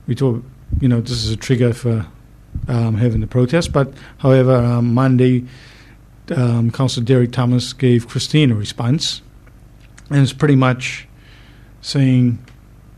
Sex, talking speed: male, 140 wpm